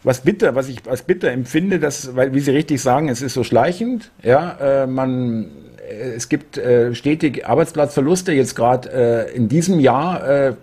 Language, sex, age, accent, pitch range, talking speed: German, male, 50-69, German, 115-150 Hz, 180 wpm